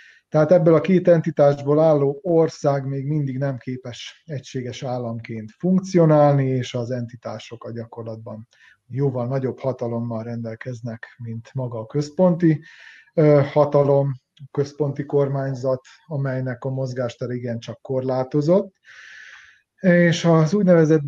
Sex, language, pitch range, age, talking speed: male, Hungarian, 120-145 Hz, 30-49, 110 wpm